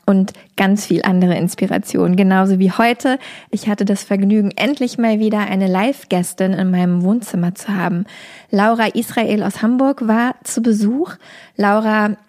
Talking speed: 145 wpm